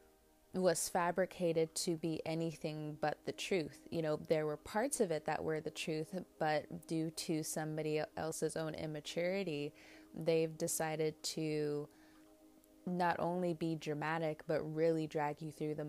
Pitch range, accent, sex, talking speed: 150-170 Hz, American, female, 145 wpm